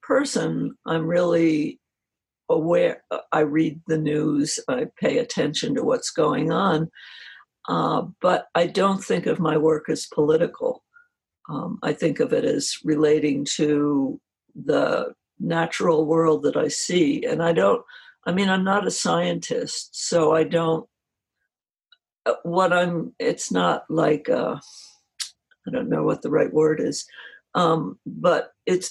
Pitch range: 155-230 Hz